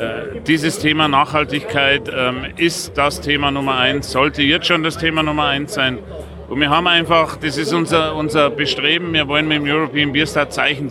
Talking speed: 190 wpm